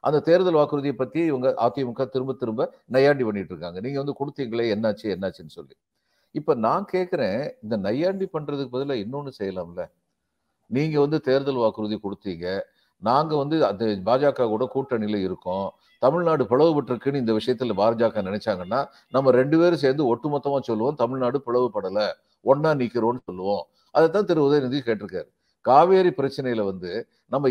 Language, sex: Tamil, male